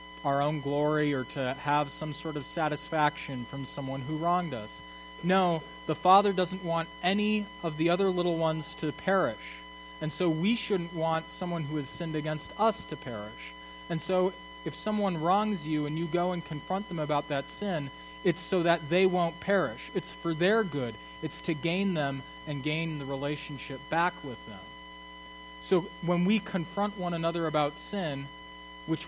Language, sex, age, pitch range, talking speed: English, male, 20-39, 145-170 Hz, 180 wpm